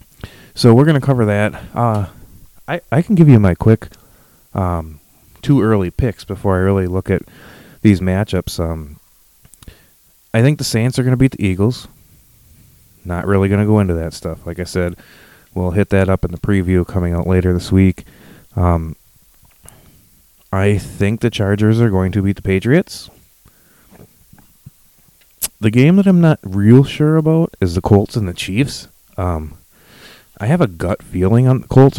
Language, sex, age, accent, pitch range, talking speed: English, male, 30-49, American, 90-115 Hz, 170 wpm